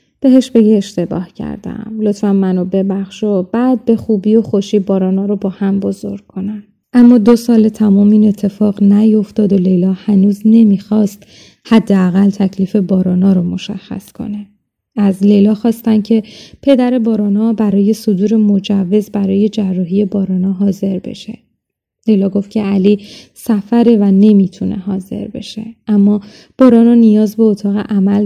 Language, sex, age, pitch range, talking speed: Persian, female, 20-39, 195-220 Hz, 140 wpm